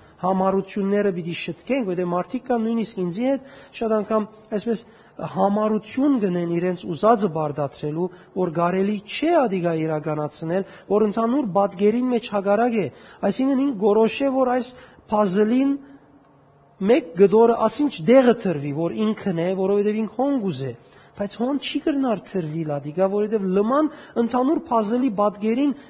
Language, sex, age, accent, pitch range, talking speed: English, male, 40-59, Turkish, 185-250 Hz, 95 wpm